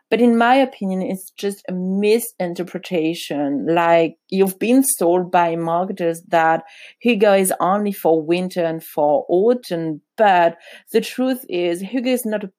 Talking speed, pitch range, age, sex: 150 wpm, 175-215 Hz, 30-49, female